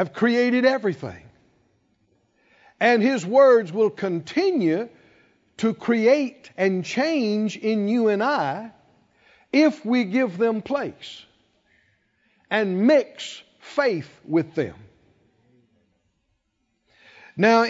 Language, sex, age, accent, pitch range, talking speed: English, male, 60-79, American, 170-250 Hz, 90 wpm